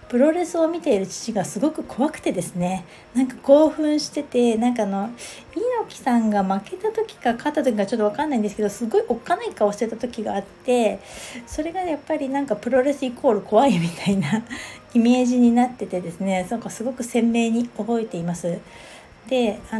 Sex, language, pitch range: female, Japanese, 195-275 Hz